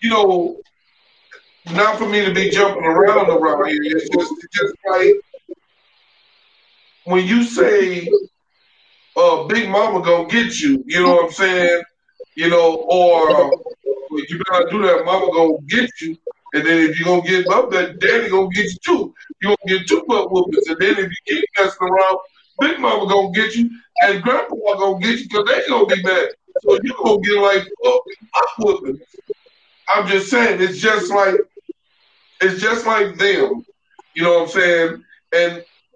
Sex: male